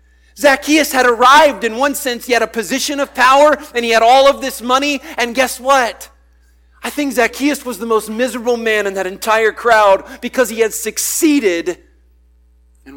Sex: male